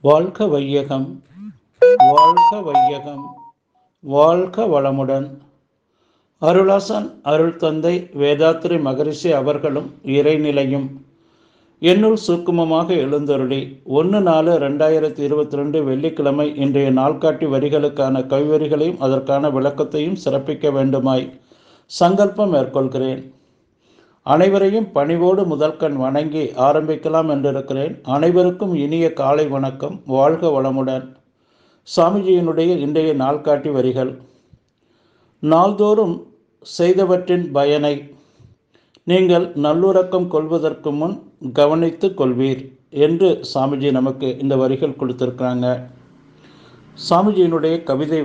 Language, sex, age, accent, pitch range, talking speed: Tamil, male, 60-79, native, 135-170 Hz, 80 wpm